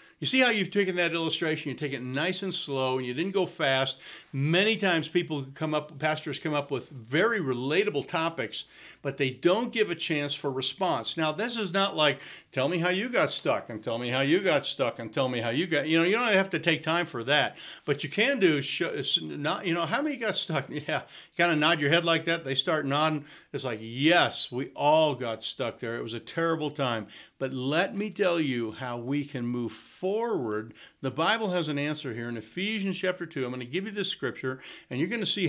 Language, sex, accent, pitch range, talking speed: English, male, American, 130-170 Hz, 240 wpm